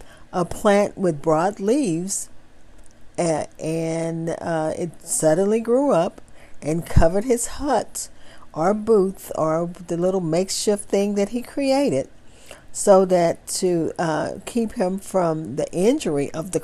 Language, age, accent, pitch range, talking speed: English, 50-69, American, 165-220 Hz, 130 wpm